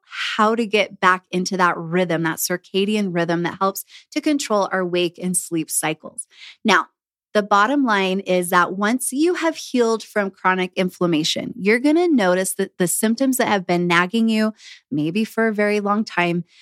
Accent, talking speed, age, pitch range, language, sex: American, 180 wpm, 20-39, 180-220 Hz, English, female